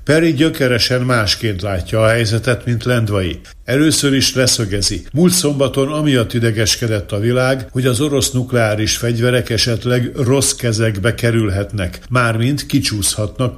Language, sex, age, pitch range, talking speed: Hungarian, male, 60-79, 105-130 Hz, 125 wpm